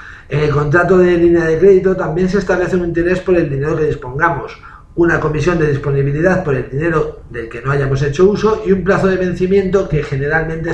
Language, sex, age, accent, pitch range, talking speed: Spanish, male, 40-59, Spanish, 145-175 Hz, 205 wpm